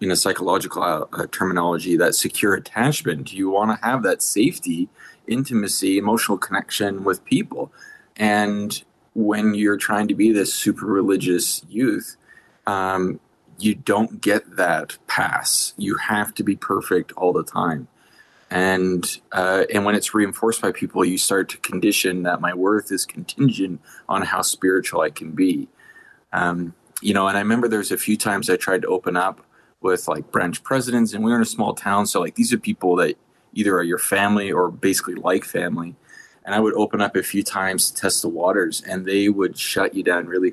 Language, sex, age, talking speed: English, male, 20-39, 180 wpm